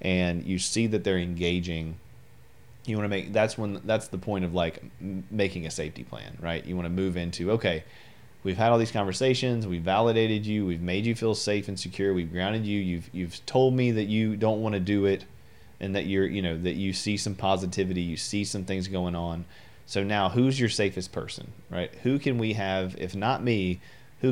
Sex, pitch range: male, 90-110 Hz